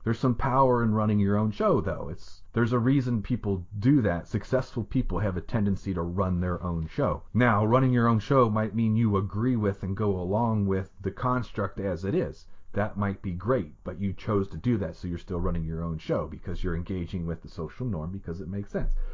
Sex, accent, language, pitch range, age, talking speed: male, American, English, 90-110 Hz, 40-59, 230 wpm